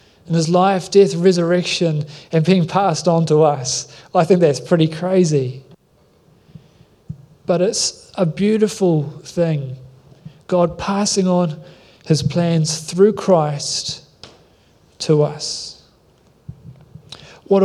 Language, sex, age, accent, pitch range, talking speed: English, male, 30-49, Australian, 155-185 Hz, 105 wpm